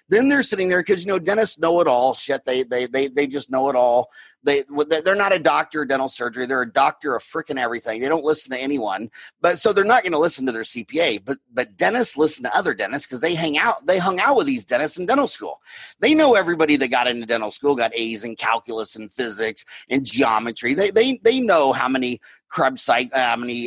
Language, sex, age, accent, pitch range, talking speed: English, male, 30-49, American, 135-205 Hz, 245 wpm